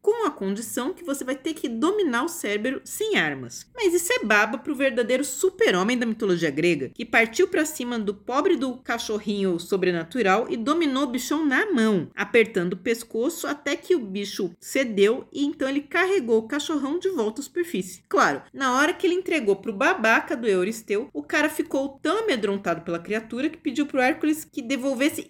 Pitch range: 195-295 Hz